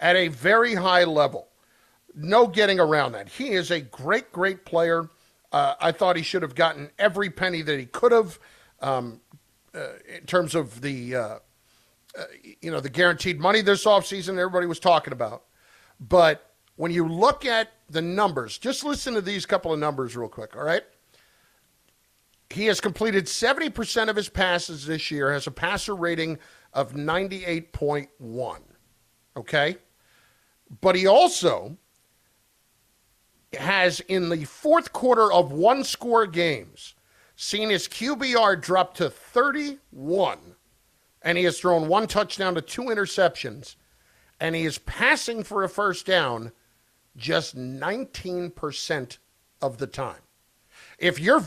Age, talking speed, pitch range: 50-69, 145 wpm, 155-210 Hz